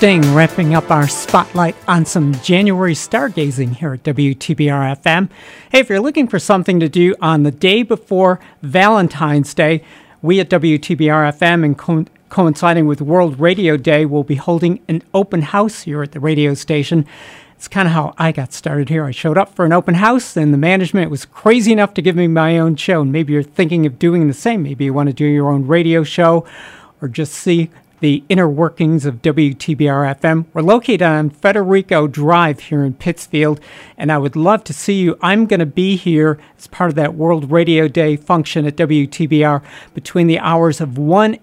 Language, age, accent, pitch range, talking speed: English, 50-69, American, 150-180 Hz, 190 wpm